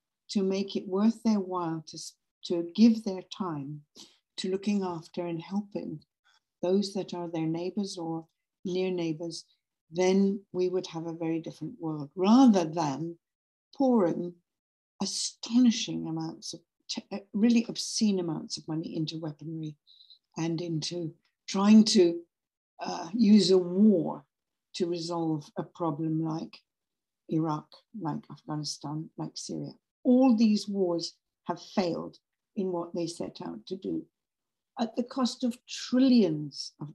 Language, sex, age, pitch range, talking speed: English, female, 60-79, 165-205 Hz, 130 wpm